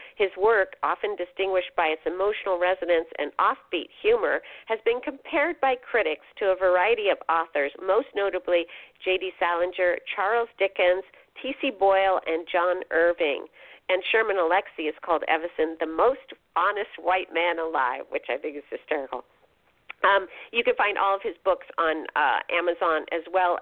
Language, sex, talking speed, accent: English, female, 160 wpm, American